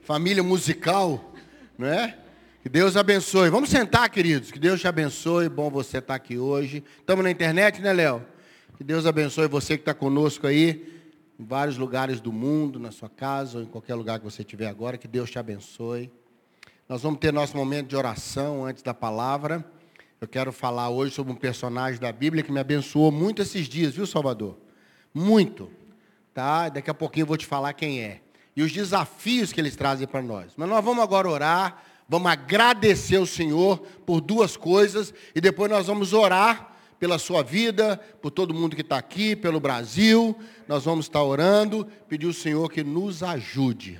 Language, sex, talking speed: Portuguese, male, 185 wpm